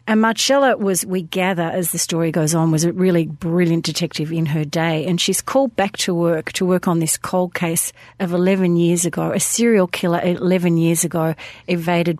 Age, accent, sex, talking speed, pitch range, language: 40-59, Australian, female, 200 wpm, 165-185 Hz, English